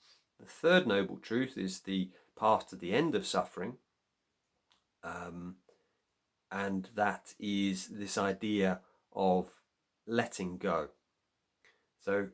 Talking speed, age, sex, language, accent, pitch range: 105 wpm, 40-59, male, English, British, 90-105 Hz